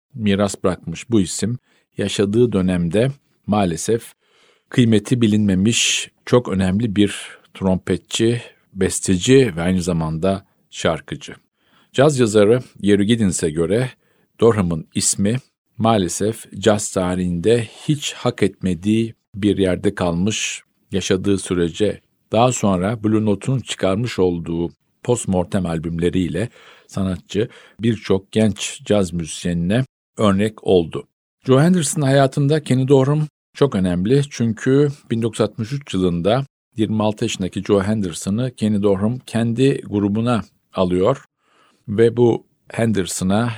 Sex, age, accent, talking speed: male, 50-69, native, 100 wpm